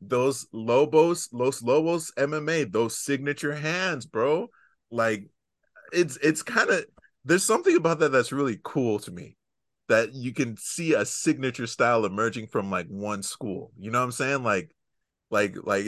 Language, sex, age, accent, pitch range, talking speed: English, male, 30-49, American, 115-155 Hz, 165 wpm